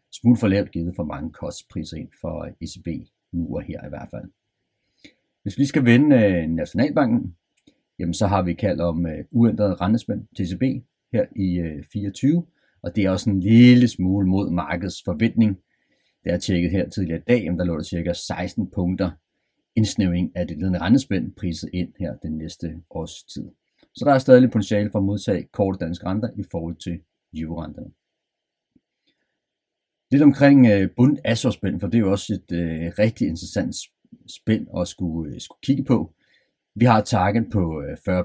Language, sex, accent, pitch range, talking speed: Danish, male, native, 85-115 Hz, 170 wpm